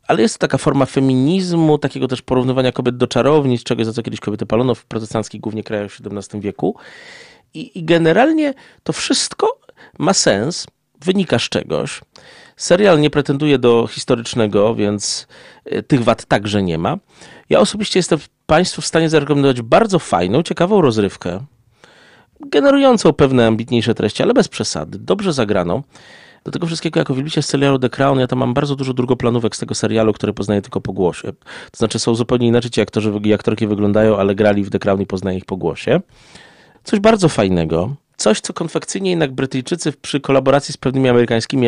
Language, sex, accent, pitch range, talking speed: Polish, male, native, 110-150 Hz, 175 wpm